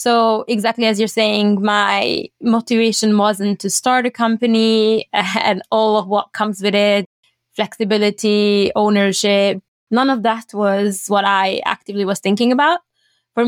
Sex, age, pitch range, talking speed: female, 20-39, 195-230 Hz, 145 wpm